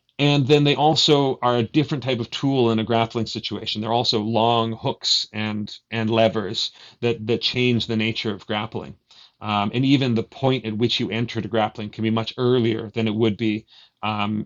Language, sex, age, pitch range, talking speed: English, male, 40-59, 110-125 Hz, 200 wpm